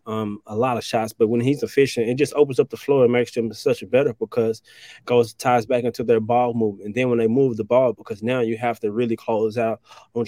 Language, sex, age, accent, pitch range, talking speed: English, male, 20-39, American, 115-135 Hz, 270 wpm